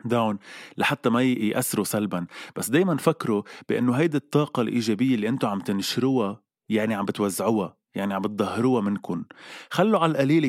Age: 20-39